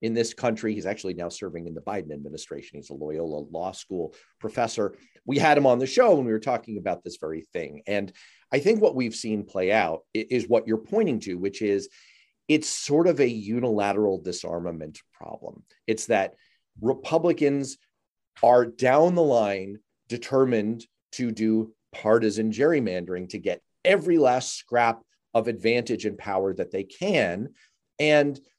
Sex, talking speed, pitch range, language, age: male, 165 wpm, 100-135 Hz, English, 40-59